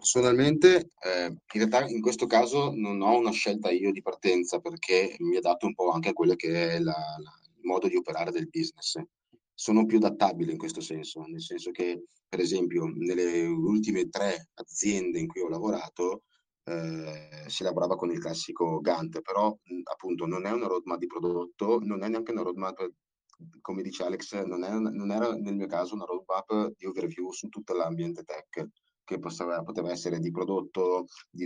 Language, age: Italian, 30-49